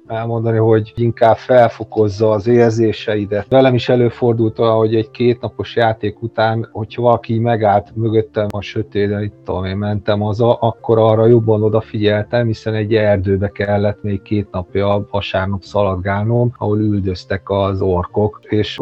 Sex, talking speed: male, 135 wpm